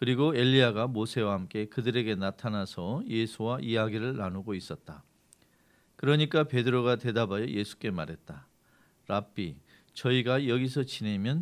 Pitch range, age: 105-140 Hz, 40-59